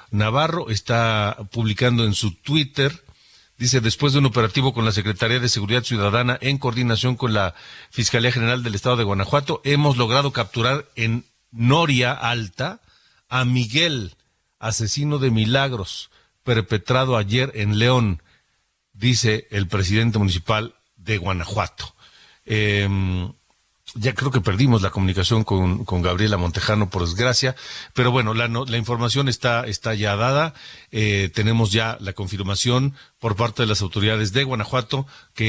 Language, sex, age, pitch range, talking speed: Spanish, male, 50-69, 105-130 Hz, 140 wpm